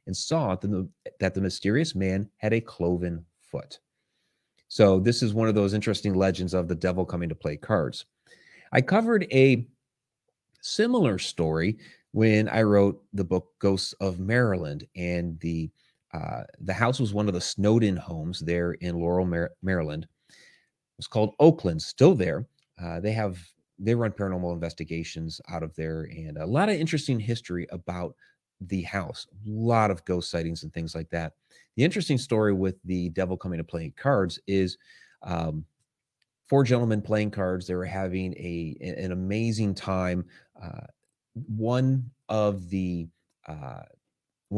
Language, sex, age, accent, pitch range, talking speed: English, male, 30-49, American, 85-110 Hz, 155 wpm